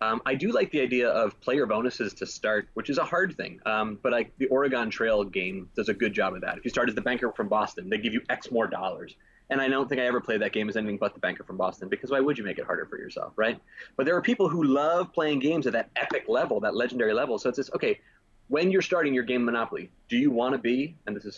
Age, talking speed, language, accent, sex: 20-39, 285 wpm, English, American, male